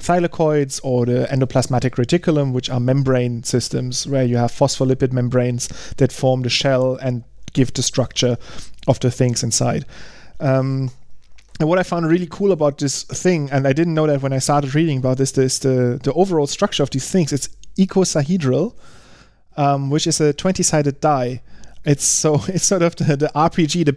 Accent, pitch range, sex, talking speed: German, 130-155 Hz, male, 180 wpm